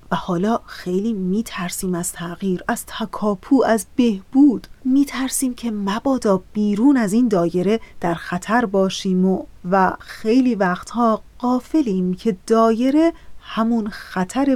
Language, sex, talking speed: Persian, female, 120 wpm